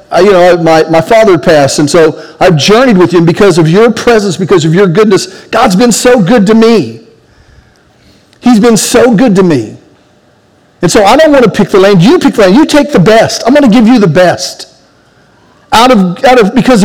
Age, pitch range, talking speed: 50-69, 175-230 Hz, 225 wpm